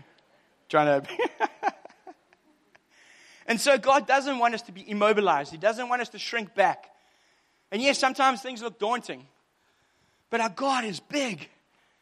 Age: 30-49